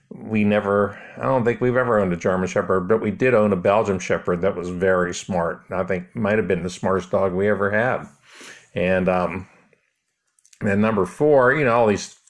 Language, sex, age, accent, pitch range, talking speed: English, male, 50-69, American, 95-120 Hz, 210 wpm